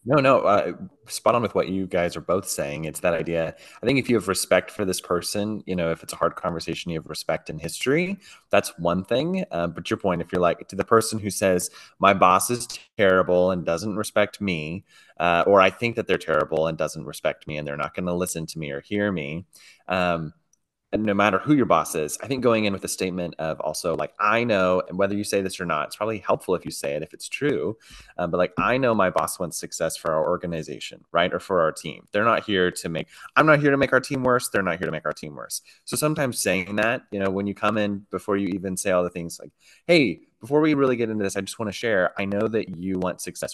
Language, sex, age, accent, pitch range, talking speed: English, male, 30-49, American, 90-115 Hz, 265 wpm